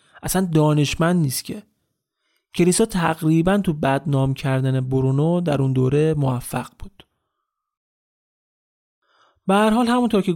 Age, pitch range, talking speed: 30-49, 145-185 Hz, 105 wpm